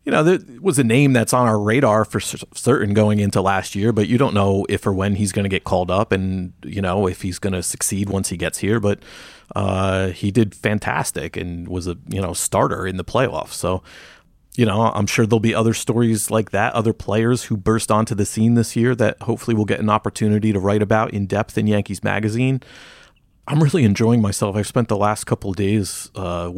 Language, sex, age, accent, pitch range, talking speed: English, male, 30-49, American, 95-115 Hz, 230 wpm